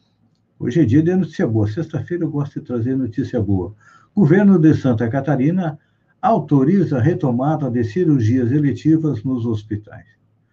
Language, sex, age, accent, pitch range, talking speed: Portuguese, male, 60-79, Brazilian, 110-150 Hz, 140 wpm